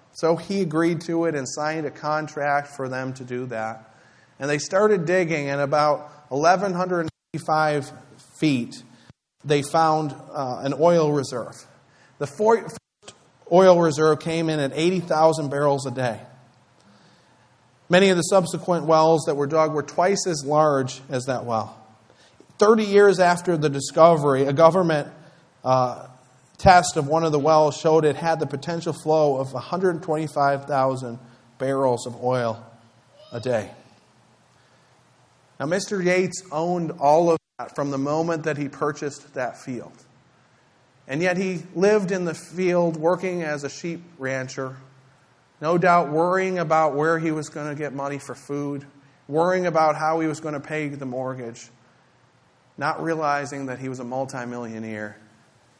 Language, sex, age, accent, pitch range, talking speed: English, male, 40-59, American, 130-165 Hz, 150 wpm